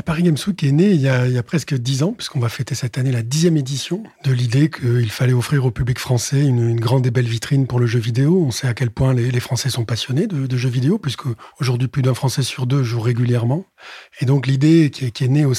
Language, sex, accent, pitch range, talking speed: French, male, French, 125-145 Hz, 275 wpm